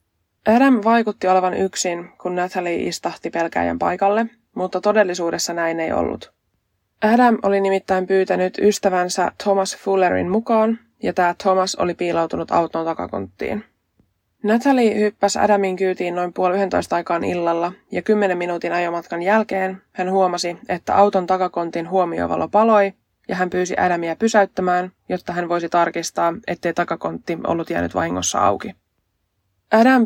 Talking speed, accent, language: 130 wpm, native, Finnish